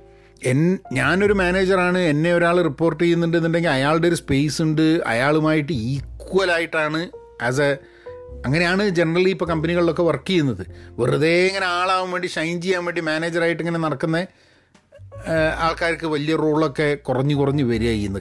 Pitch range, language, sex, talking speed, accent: 130-180 Hz, Malayalam, male, 125 wpm, native